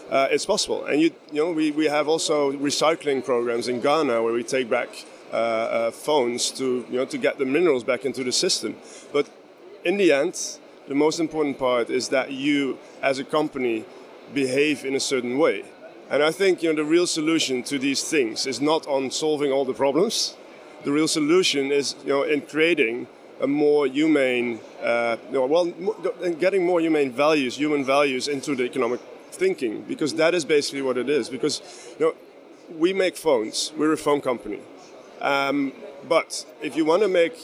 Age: 30-49